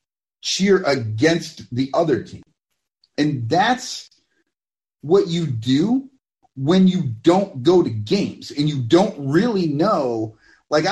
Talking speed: 120 wpm